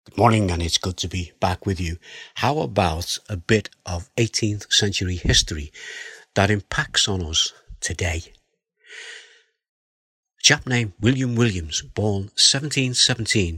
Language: English